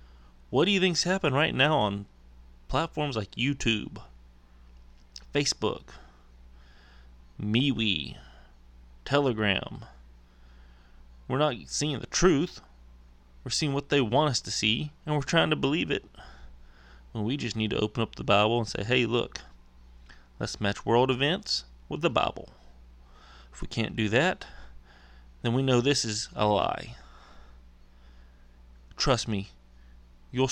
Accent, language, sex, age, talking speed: American, English, male, 30-49, 135 wpm